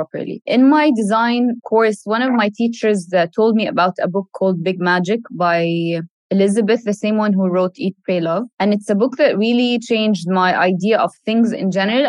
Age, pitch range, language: 20-39, 185-220 Hz, English